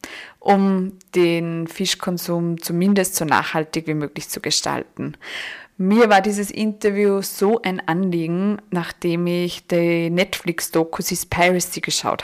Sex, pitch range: female, 170-195 Hz